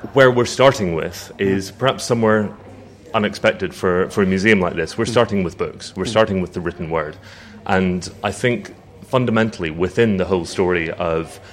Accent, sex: British, male